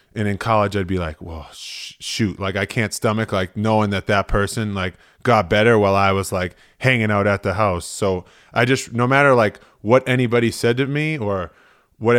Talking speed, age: 210 wpm, 20-39